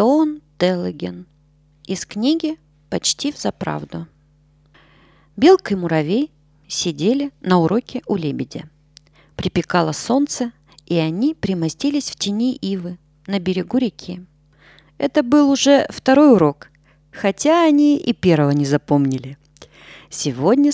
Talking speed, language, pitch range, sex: 105 wpm, Russian, 150-240 Hz, female